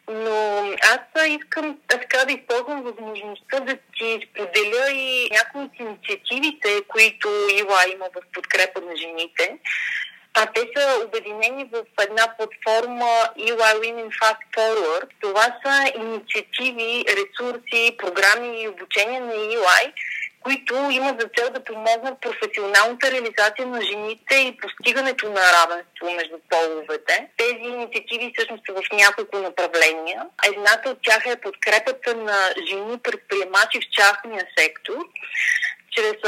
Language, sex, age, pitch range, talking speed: Bulgarian, female, 30-49, 205-260 Hz, 130 wpm